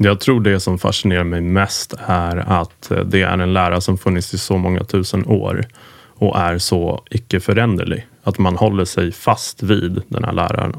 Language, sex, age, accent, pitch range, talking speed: Swedish, male, 30-49, Norwegian, 90-115 Hz, 185 wpm